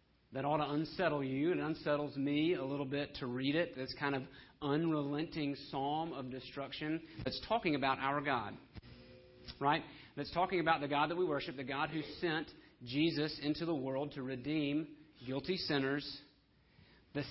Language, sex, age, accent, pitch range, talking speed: English, male, 40-59, American, 125-150 Hz, 165 wpm